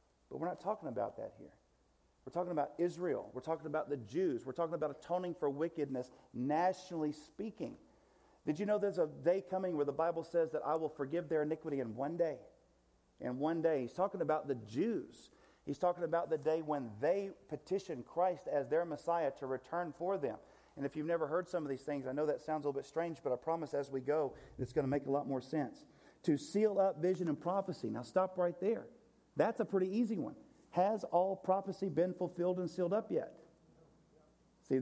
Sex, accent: male, American